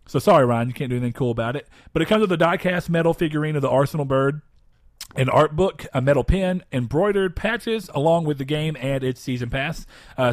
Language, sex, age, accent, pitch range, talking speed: English, male, 40-59, American, 120-160 Hz, 225 wpm